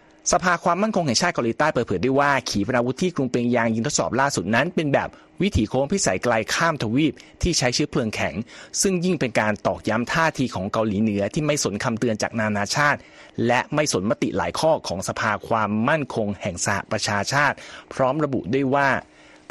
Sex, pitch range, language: male, 110-140 Hz, Thai